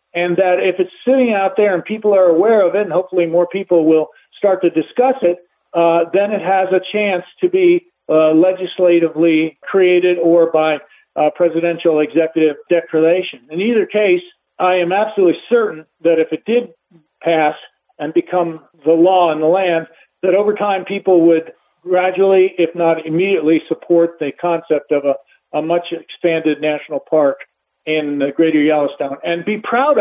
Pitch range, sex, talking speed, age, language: 165-205 Hz, male, 170 wpm, 50-69, English